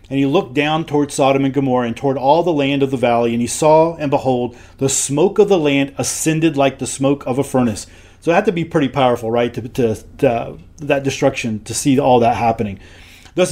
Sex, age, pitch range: male, 30-49, 125-165 Hz